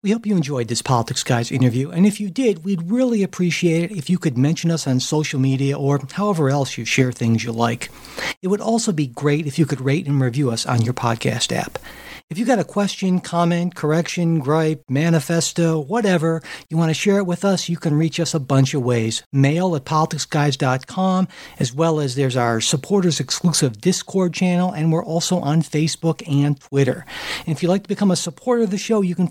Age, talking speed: 60-79, 215 wpm